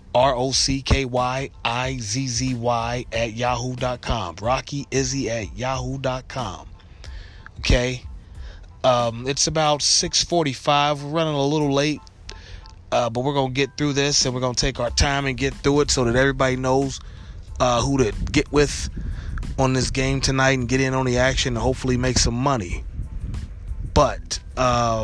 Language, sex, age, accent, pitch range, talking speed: English, male, 20-39, American, 100-135 Hz, 150 wpm